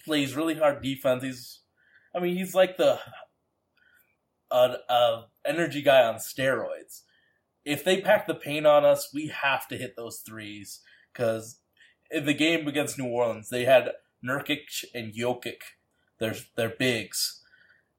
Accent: American